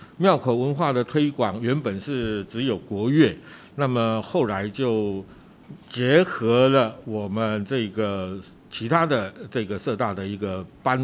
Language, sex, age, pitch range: Chinese, male, 60-79, 105-130 Hz